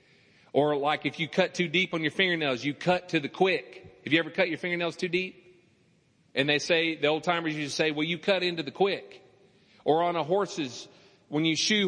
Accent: American